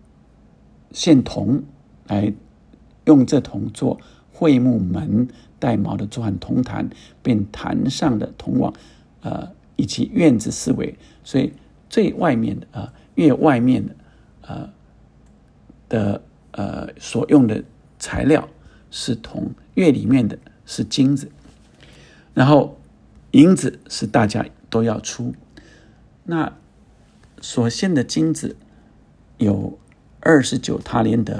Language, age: Chinese, 50-69